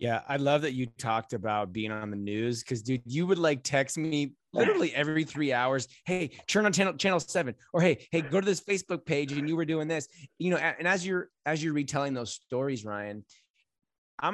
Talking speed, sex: 220 wpm, male